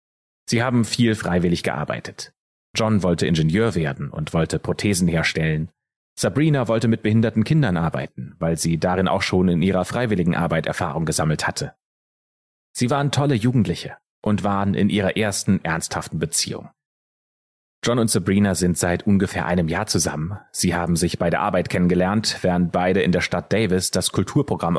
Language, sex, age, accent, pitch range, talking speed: German, male, 30-49, German, 85-115 Hz, 160 wpm